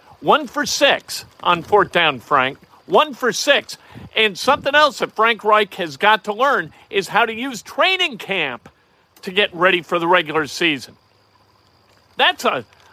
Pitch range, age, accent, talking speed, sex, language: 140-225 Hz, 50-69, American, 160 wpm, male, English